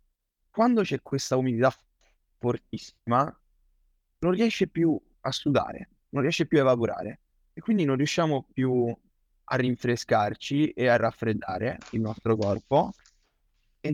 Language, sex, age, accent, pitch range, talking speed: Italian, male, 20-39, native, 115-145 Hz, 125 wpm